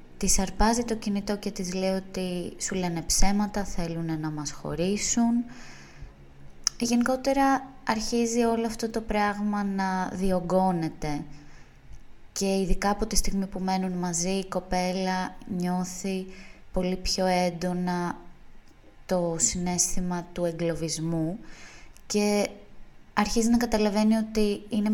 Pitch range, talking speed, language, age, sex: 175-220 Hz, 115 wpm, Greek, 20-39, female